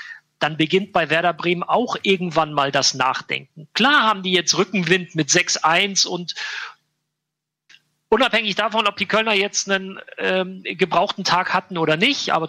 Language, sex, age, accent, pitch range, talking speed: German, male, 40-59, German, 165-205 Hz, 155 wpm